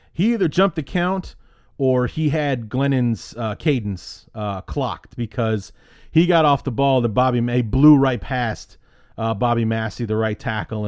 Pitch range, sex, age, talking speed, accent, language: 110-130 Hz, male, 30-49, 170 wpm, American, English